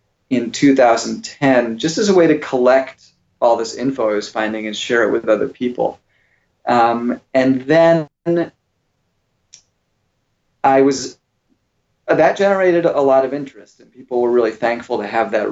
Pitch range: 115-140 Hz